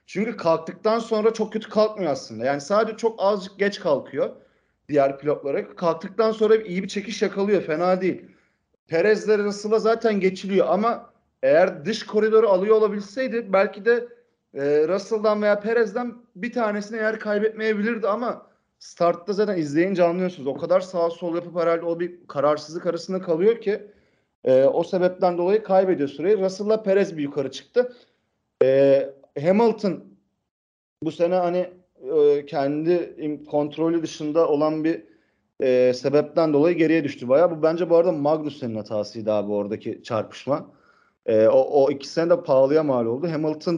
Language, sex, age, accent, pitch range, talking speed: Turkish, male, 40-59, native, 150-205 Hz, 150 wpm